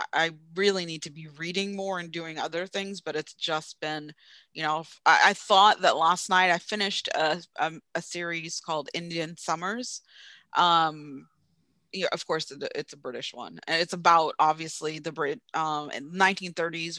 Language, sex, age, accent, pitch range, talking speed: English, female, 30-49, American, 160-225 Hz, 175 wpm